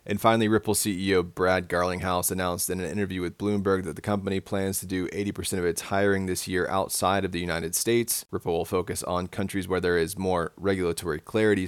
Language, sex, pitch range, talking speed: English, male, 90-100 Hz, 205 wpm